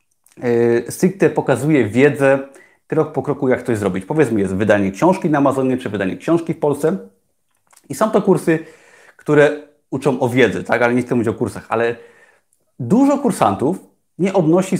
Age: 30-49